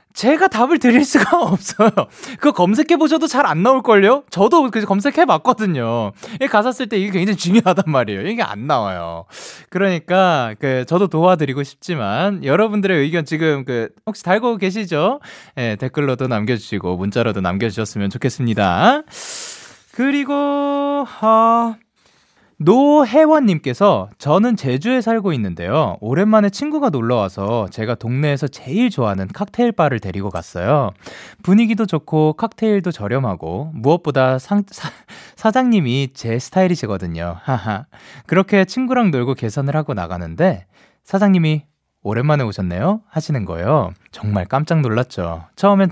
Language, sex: Korean, male